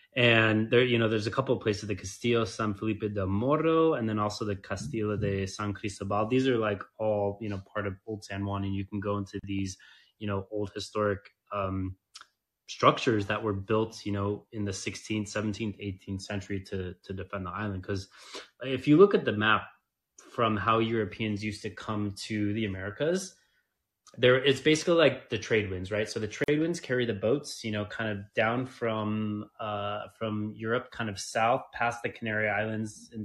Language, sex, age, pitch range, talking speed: English, male, 20-39, 100-115 Hz, 200 wpm